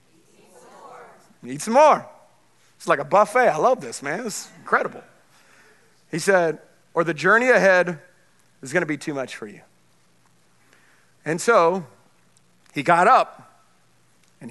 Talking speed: 130 wpm